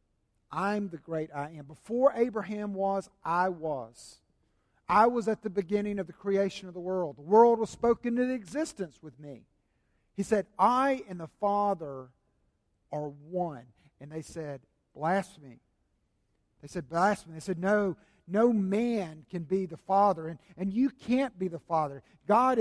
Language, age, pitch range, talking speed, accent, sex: English, 50-69, 145-210 Hz, 160 wpm, American, male